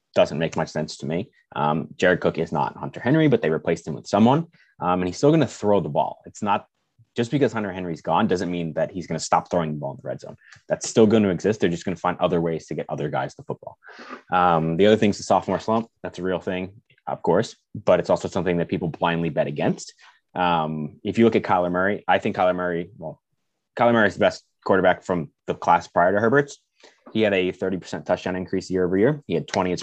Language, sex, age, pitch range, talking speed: English, male, 20-39, 90-115 Hz, 255 wpm